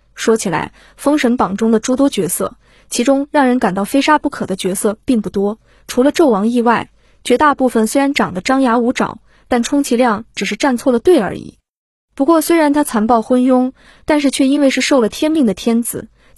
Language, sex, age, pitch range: Chinese, female, 20-39, 215-270 Hz